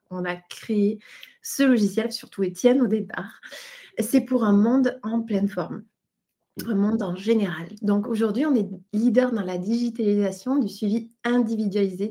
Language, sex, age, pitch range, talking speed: French, female, 20-39, 190-235 Hz, 155 wpm